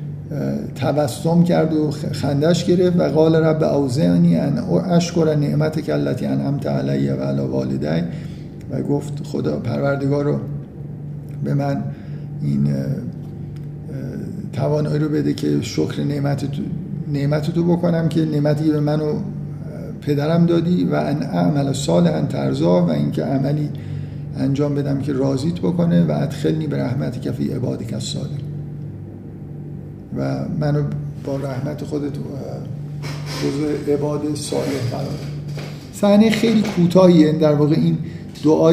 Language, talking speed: Persian, 120 wpm